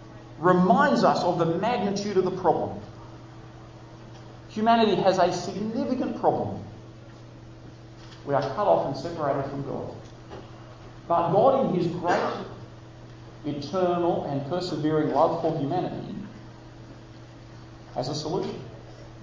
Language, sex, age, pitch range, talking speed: English, male, 40-59, 115-155 Hz, 110 wpm